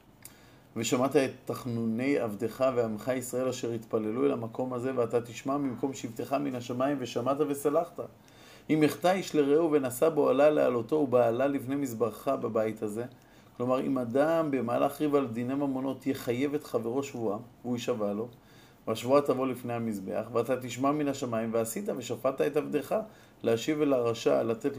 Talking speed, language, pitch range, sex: 150 wpm, Hebrew, 115-140 Hz, male